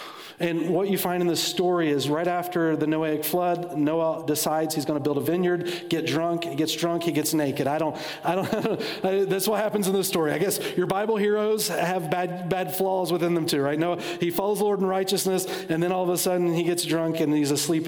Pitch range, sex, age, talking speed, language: 155-175 Hz, male, 40-59, 240 wpm, English